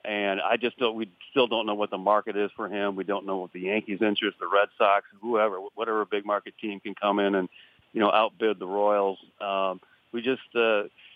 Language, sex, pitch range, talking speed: English, male, 100-110 Hz, 220 wpm